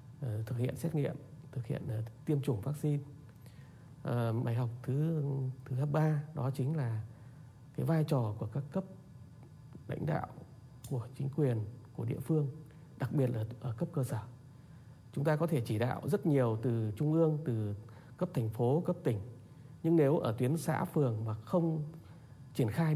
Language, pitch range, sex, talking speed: Vietnamese, 120-150 Hz, male, 175 wpm